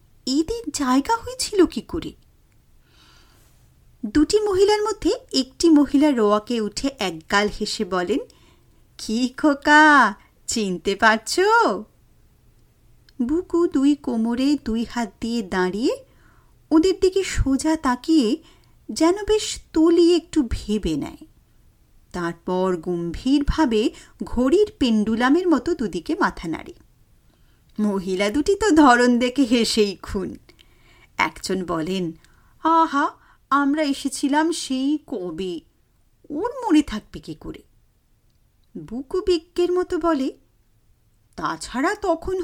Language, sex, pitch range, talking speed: Bengali, female, 210-340 Hz, 100 wpm